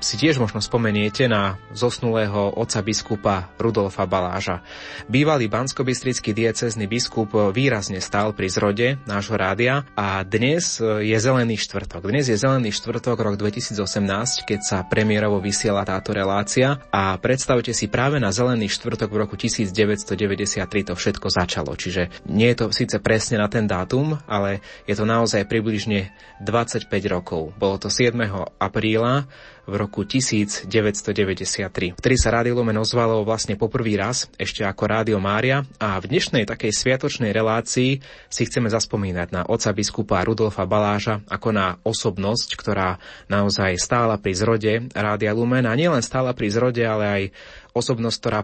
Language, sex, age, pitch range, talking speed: Slovak, male, 20-39, 100-115 Hz, 145 wpm